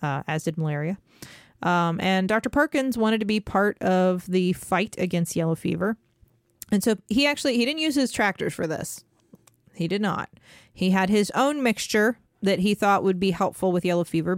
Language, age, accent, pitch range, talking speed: English, 30-49, American, 170-215 Hz, 190 wpm